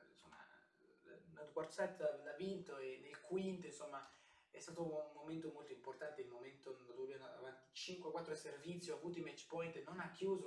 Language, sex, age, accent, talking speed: Italian, male, 20-39, native, 160 wpm